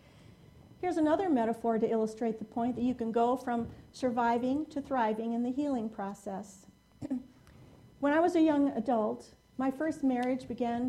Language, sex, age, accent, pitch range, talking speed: English, female, 50-69, American, 220-280 Hz, 160 wpm